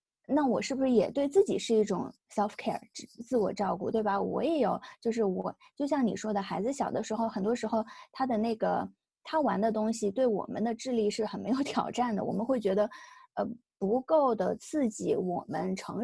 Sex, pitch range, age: female, 205-265 Hz, 20-39